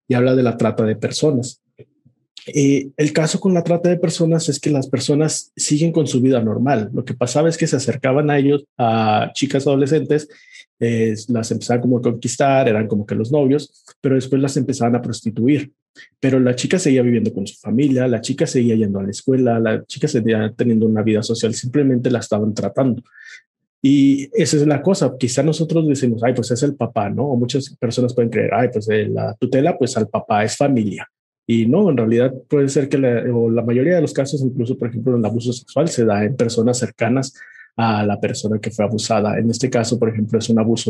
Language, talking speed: Spanish, 215 wpm